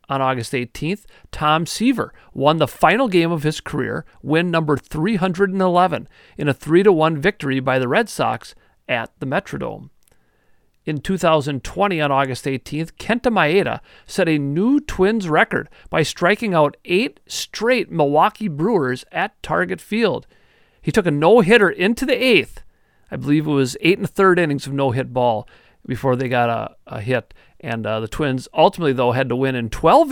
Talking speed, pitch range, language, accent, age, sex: 165 wpm, 135-190 Hz, English, American, 40-59, male